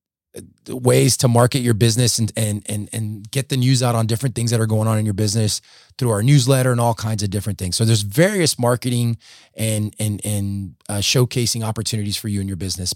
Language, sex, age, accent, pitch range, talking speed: English, male, 20-39, American, 105-130 Hz, 220 wpm